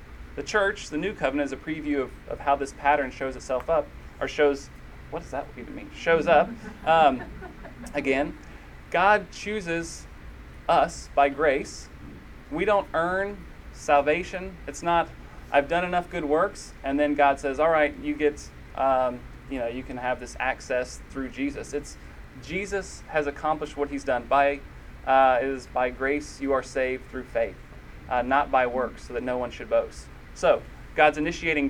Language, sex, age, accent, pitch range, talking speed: English, male, 30-49, American, 130-160 Hz, 170 wpm